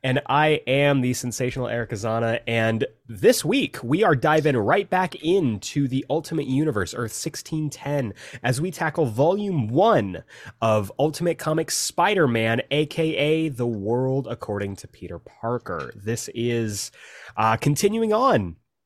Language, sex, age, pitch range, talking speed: English, male, 30-49, 115-155 Hz, 135 wpm